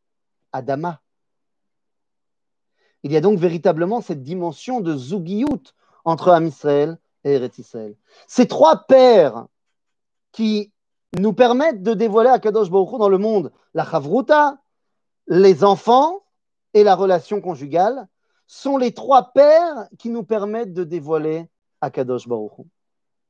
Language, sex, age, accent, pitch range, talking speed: French, male, 40-59, French, 170-245 Hz, 125 wpm